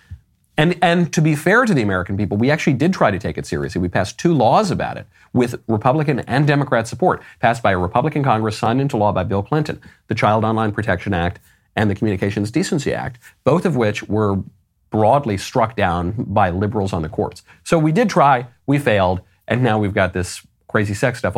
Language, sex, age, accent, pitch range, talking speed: English, male, 40-59, American, 95-130 Hz, 210 wpm